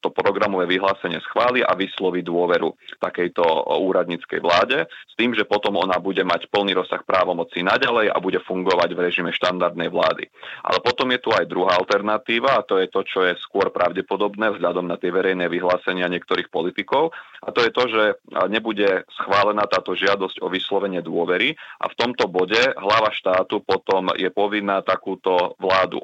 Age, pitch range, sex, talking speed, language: 30-49, 90-100 Hz, male, 170 wpm, Slovak